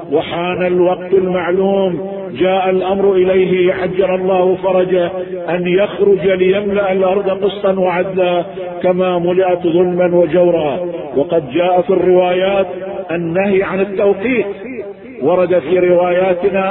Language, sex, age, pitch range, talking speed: Arabic, male, 50-69, 185-220 Hz, 105 wpm